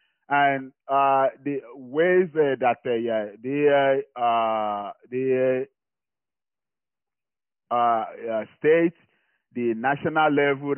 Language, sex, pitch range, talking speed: English, male, 110-130 Hz, 95 wpm